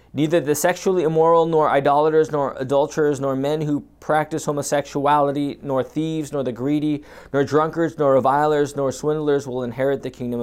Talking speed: 160 wpm